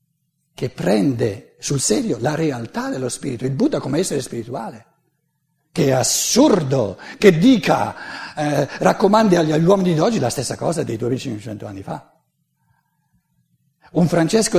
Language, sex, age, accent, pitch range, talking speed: Italian, male, 60-79, native, 130-185 Hz, 140 wpm